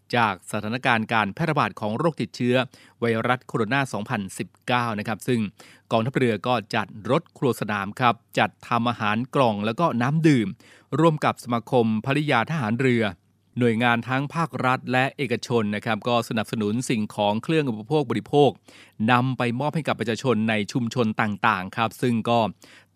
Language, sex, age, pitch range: Thai, male, 20-39, 110-130 Hz